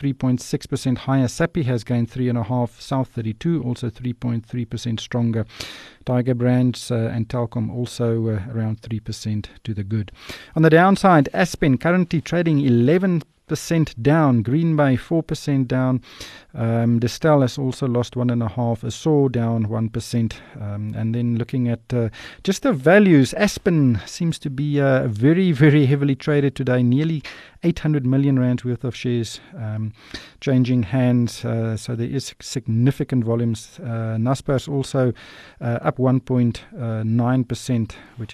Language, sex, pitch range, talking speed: English, male, 115-145 Hz, 135 wpm